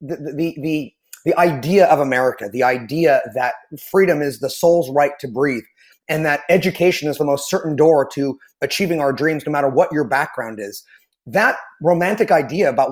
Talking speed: 180 wpm